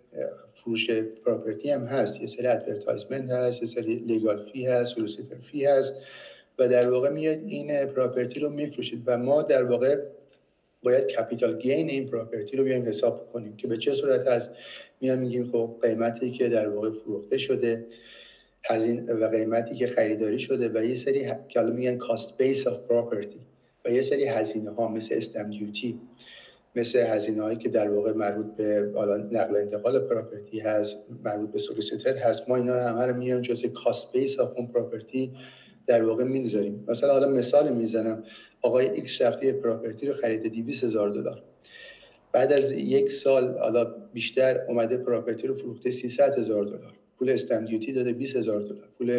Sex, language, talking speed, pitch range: male, Persian, 160 wpm, 115-135 Hz